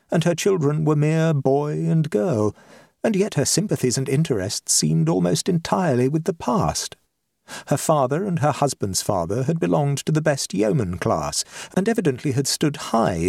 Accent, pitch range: British, 110-160 Hz